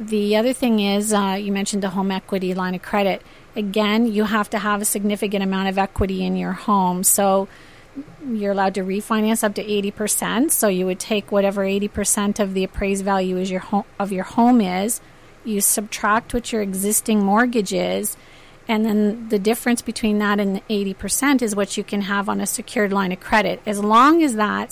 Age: 40-59